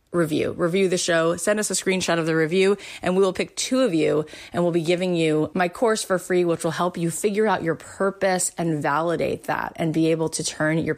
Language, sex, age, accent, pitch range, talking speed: English, female, 30-49, American, 160-195 Hz, 240 wpm